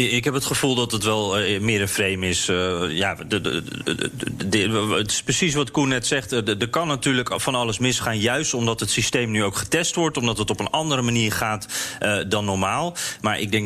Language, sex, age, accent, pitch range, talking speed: Dutch, male, 40-59, Dutch, 105-125 Hz, 235 wpm